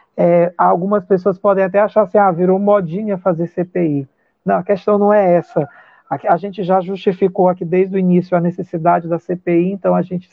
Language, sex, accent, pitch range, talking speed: Portuguese, male, Brazilian, 180-220 Hz, 190 wpm